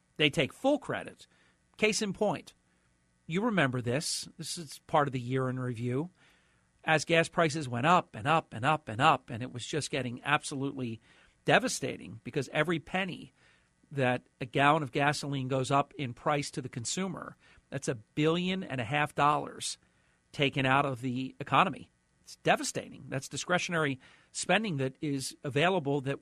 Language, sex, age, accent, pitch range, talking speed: English, male, 50-69, American, 130-155 Hz, 165 wpm